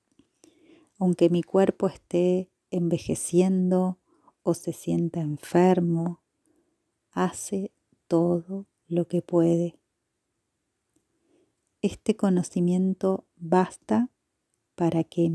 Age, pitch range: 30-49, 170-215 Hz